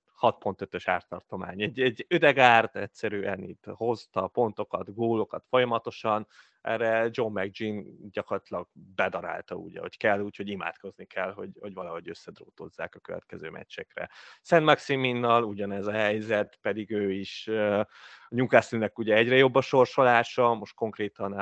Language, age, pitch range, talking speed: Hungarian, 30-49, 100-125 Hz, 130 wpm